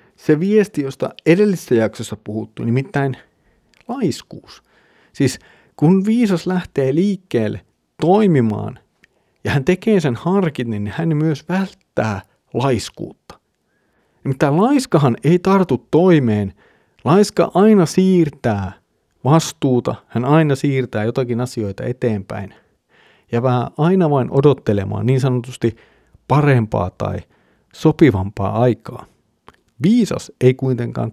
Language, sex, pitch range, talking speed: Finnish, male, 105-155 Hz, 100 wpm